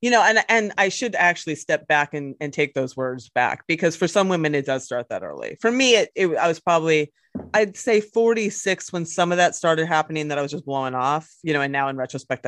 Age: 30-49